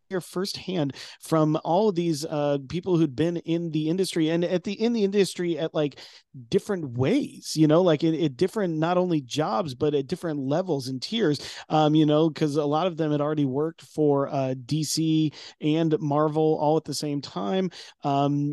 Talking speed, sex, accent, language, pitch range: 190 wpm, male, American, English, 145-170 Hz